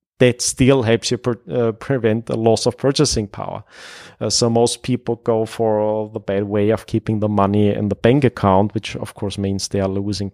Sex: male